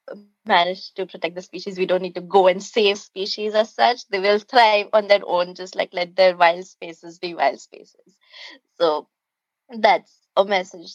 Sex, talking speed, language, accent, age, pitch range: female, 185 wpm, English, Indian, 20-39, 180-215 Hz